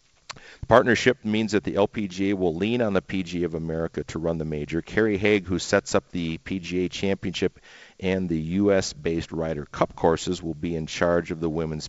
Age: 50-69